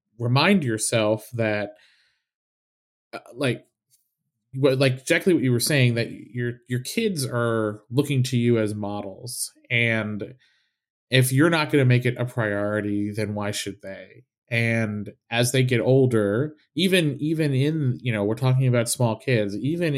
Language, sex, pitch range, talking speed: English, male, 110-145 Hz, 155 wpm